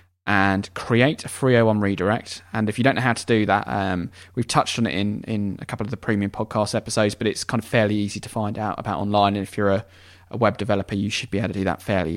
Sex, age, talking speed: male, 20-39, 265 wpm